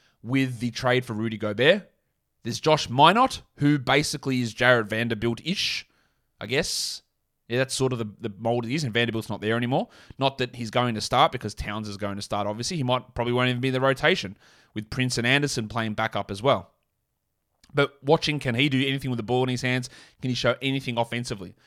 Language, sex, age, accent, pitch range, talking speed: English, male, 20-39, Australian, 120-145 Hz, 215 wpm